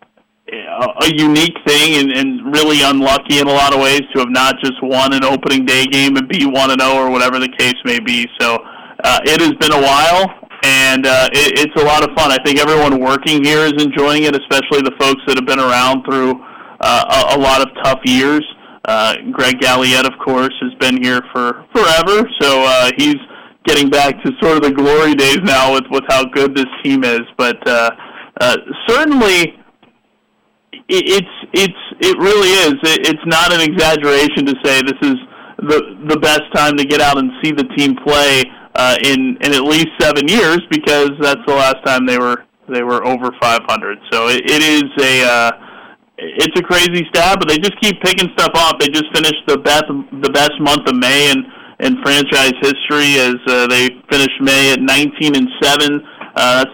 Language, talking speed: English, 195 wpm